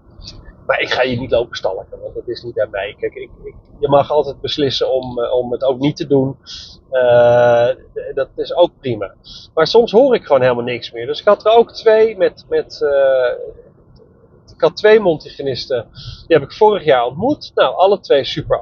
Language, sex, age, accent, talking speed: Dutch, male, 30-49, Dutch, 205 wpm